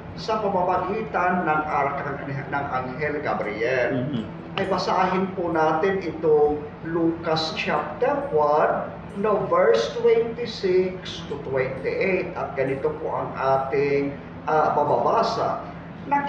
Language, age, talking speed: Filipino, 50-69, 105 wpm